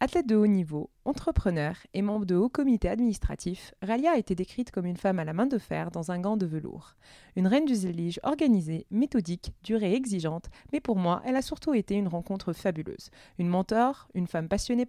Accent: French